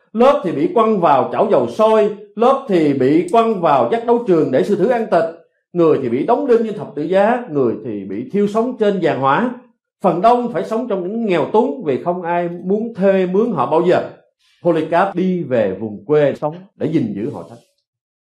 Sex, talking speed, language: male, 215 wpm, Vietnamese